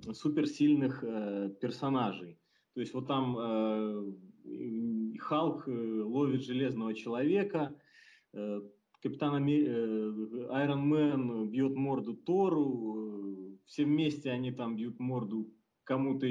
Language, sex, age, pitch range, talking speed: Russian, male, 20-39, 115-145 Hz, 100 wpm